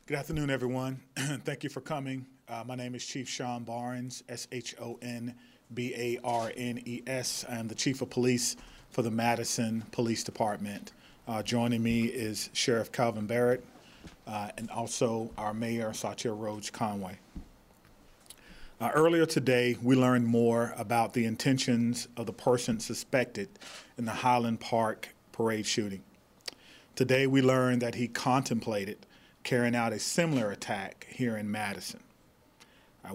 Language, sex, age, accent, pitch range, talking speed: English, male, 30-49, American, 115-125 Hz, 135 wpm